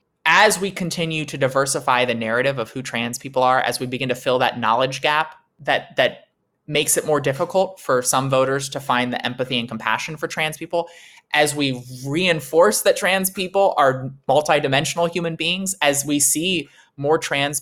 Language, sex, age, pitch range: English, male, 20-39, 130-165 Hz